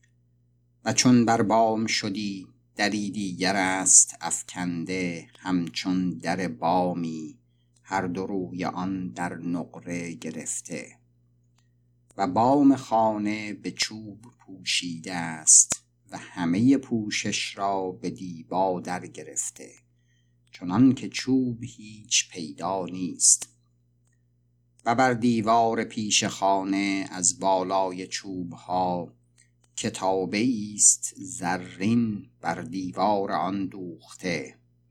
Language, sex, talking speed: Persian, male, 95 wpm